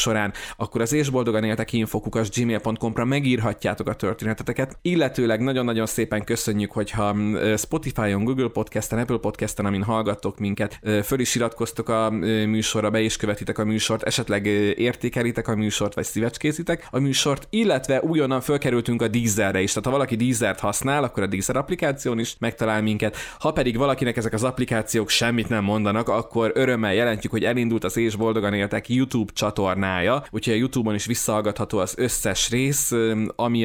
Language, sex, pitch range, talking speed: Hungarian, male, 105-120 Hz, 160 wpm